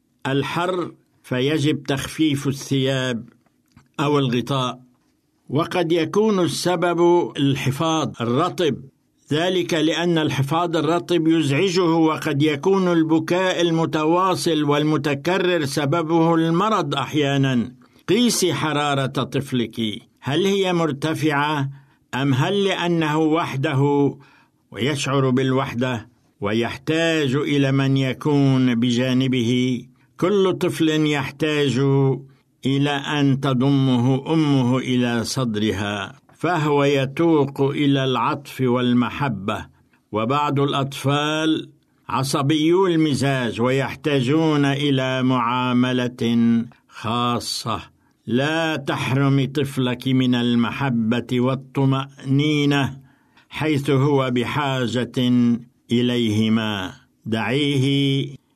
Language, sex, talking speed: Arabic, male, 75 wpm